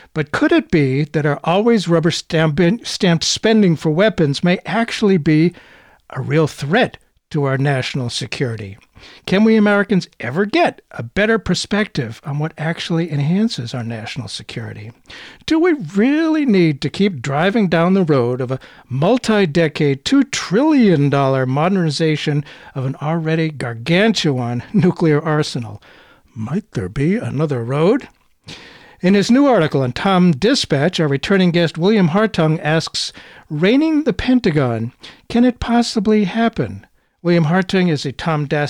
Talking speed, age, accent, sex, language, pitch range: 135 wpm, 60-79, American, male, English, 140-195 Hz